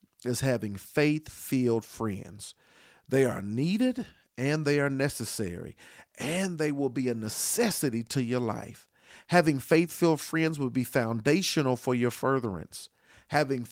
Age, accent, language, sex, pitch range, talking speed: 40-59, American, English, male, 115-155 Hz, 130 wpm